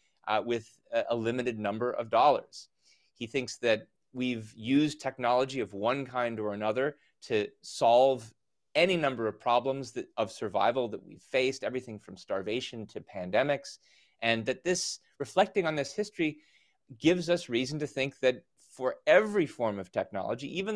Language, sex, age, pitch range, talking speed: English, male, 30-49, 115-145 Hz, 155 wpm